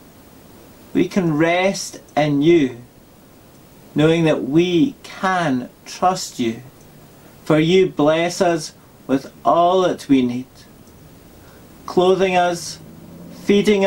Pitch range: 140-190 Hz